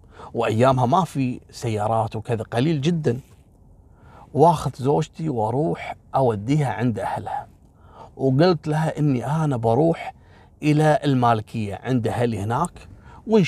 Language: Arabic